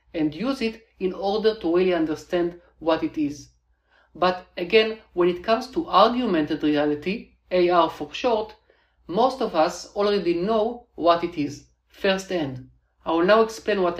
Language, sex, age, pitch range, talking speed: English, male, 50-69, 160-210 Hz, 155 wpm